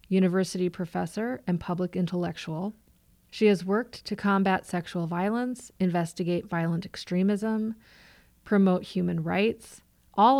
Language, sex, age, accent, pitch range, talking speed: English, female, 30-49, American, 180-210 Hz, 110 wpm